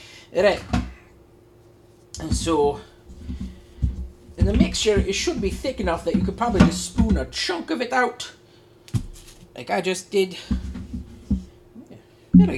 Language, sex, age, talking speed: English, male, 40-59, 130 wpm